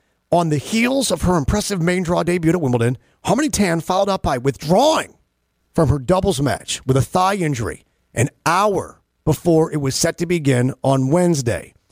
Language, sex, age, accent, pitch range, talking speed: English, male, 40-59, American, 135-190 Hz, 175 wpm